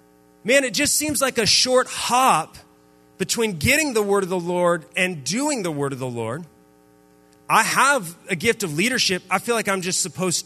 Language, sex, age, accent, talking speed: English, male, 30-49, American, 195 wpm